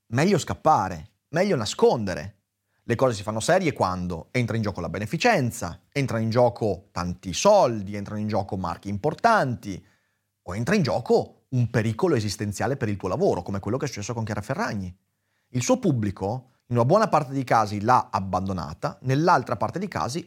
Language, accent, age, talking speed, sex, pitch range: Italian, native, 30-49, 175 wpm, male, 100-135 Hz